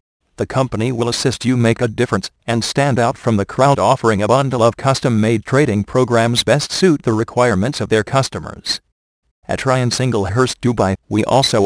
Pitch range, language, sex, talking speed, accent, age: 100-125 Hz, English, male, 175 wpm, American, 40-59